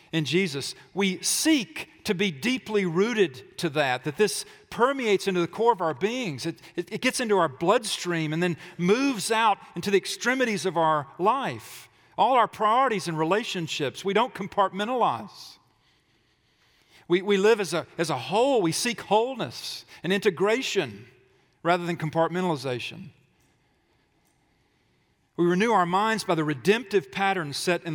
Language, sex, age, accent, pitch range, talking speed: English, male, 40-59, American, 160-205 Hz, 150 wpm